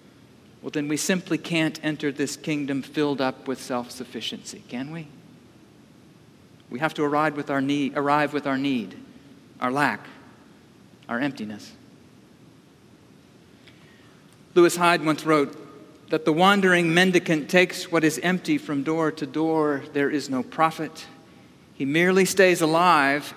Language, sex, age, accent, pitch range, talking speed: English, male, 50-69, American, 140-170 Hz, 135 wpm